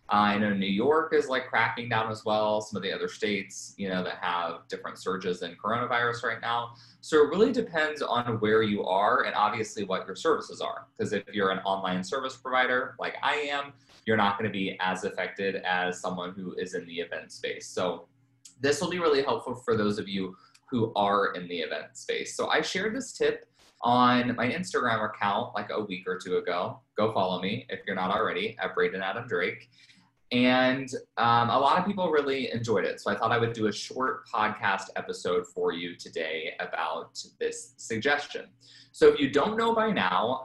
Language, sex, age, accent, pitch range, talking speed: English, male, 20-39, American, 100-150 Hz, 205 wpm